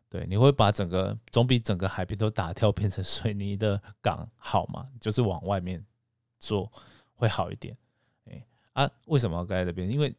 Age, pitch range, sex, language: 20-39, 95-120 Hz, male, Chinese